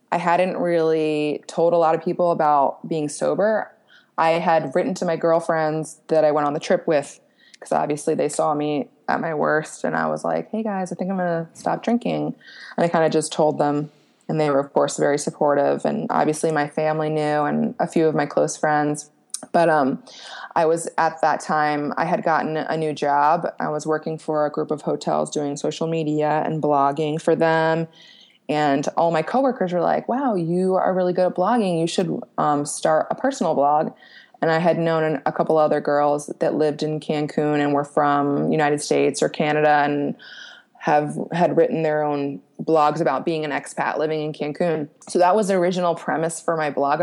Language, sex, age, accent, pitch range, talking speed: English, female, 20-39, American, 150-175 Hz, 205 wpm